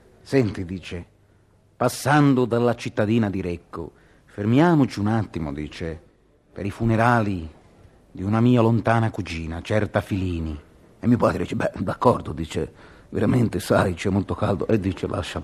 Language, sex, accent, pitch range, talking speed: Italian, male, native, 95-125 Hz, 140 wpm